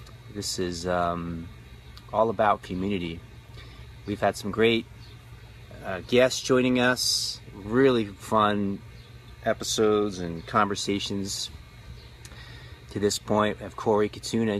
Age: 30-49